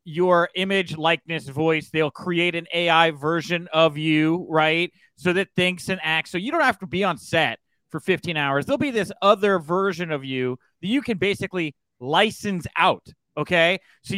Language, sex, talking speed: English, male, 180 wpm